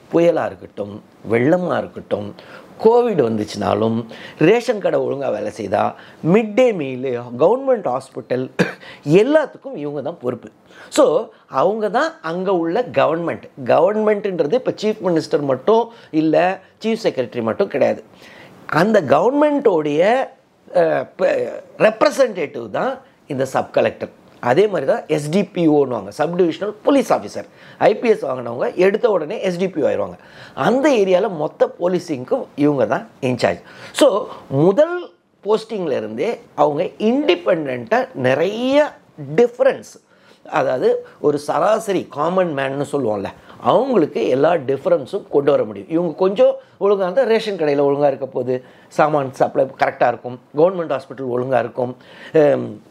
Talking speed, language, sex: 115 wpm, Tamil, male